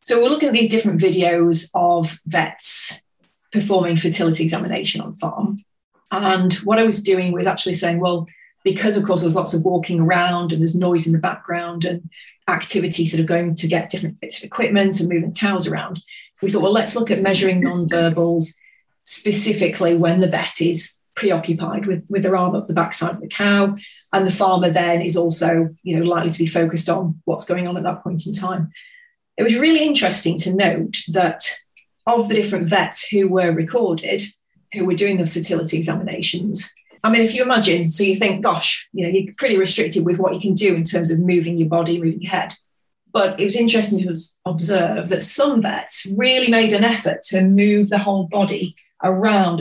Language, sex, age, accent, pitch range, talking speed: English, female, 30-49, British, 170-200 Hz, 200 wpm